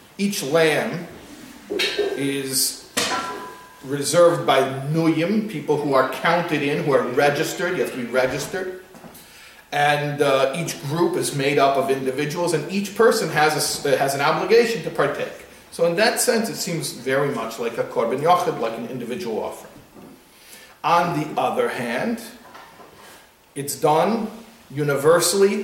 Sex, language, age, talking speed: male, English, 40-59, 145 wpm